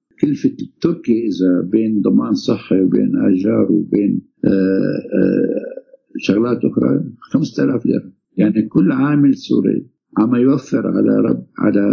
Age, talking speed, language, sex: 60-79, 120 wpm, Arabic, male